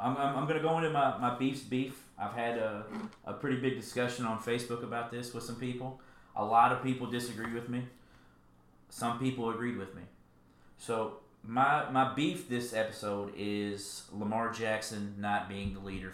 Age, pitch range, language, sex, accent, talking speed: 30-49, 95-125 Hz, English, male, American, 185 wpm